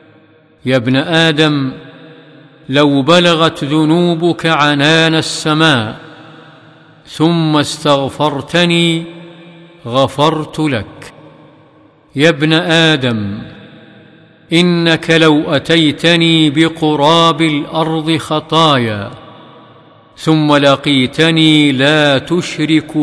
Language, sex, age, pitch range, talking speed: Arabic, male, 50-69, 130-155 Hz, 65 wpm